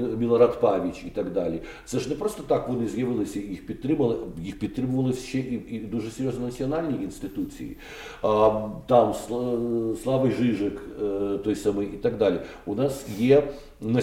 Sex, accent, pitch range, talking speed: male, native, 110-140 Hz, 150 wpm